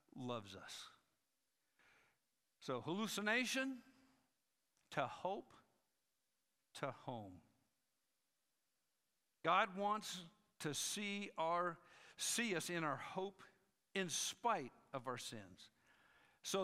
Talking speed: 85 wpm